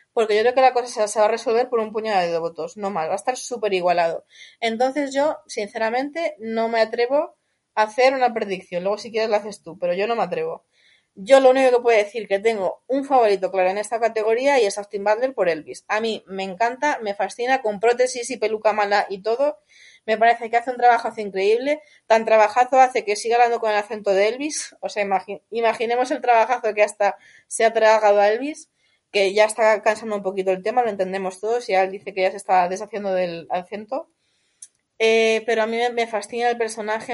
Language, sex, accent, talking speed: Spanish, female, Spanish, 220 wpm